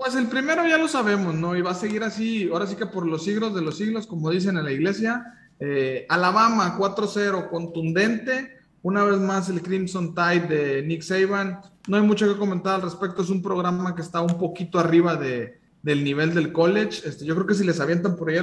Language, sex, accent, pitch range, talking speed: Spanish, male, Mexican, 165-205 Hz, 225 wpm